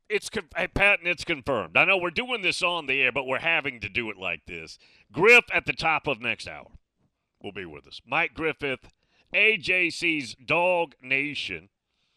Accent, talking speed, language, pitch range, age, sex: American, 185 wpm, English, 115-160 Hz, 40-59, male